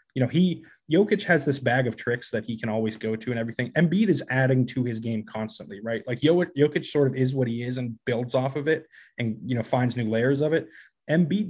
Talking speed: 245 wpm